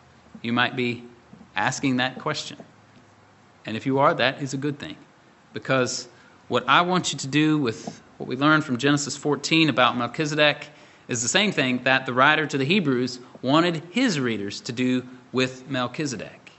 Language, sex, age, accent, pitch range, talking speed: English, male, 30-49, American, 125-165 Hz, 175 wpm